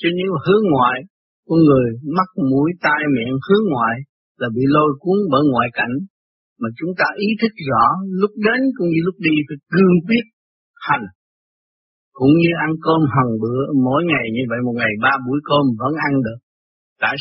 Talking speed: 190 wpm